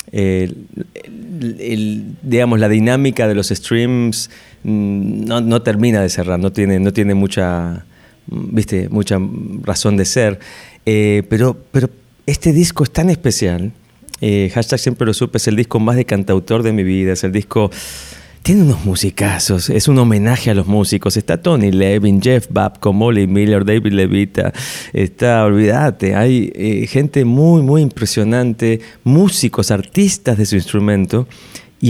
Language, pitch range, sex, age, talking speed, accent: Spanish, 105-125 Hz, male, 30-49, 145 wpm, Argentinian